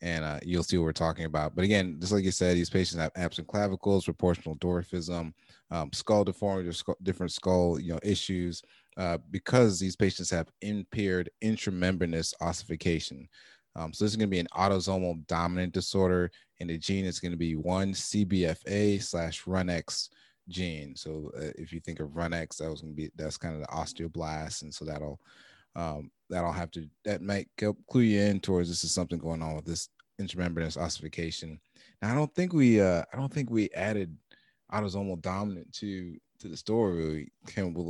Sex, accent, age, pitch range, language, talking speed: male, American, 30-49, 80-95 Hz, English, 190 wpm